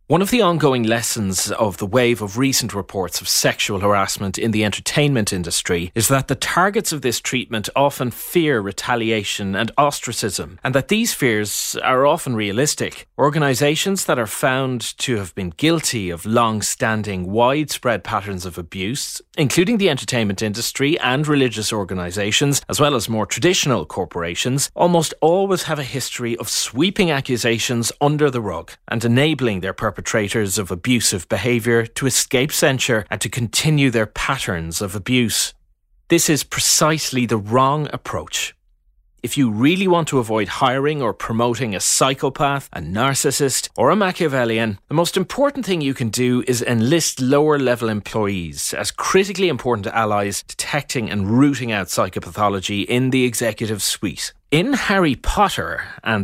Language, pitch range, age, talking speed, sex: English, 105-145 Hz, 30-49, 155 wpm, male